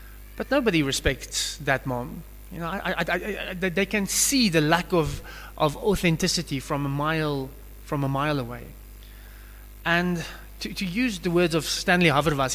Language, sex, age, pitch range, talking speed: English, male, 20-39, 125-190 Hz, 165 wpm